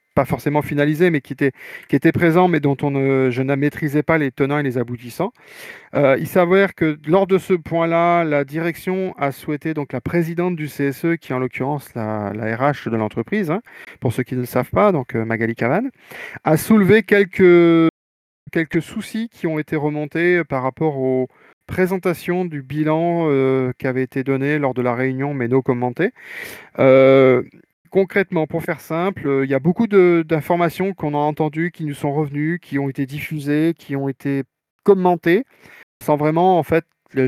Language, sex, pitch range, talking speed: French, male, 135-170 Hz, 190 wpm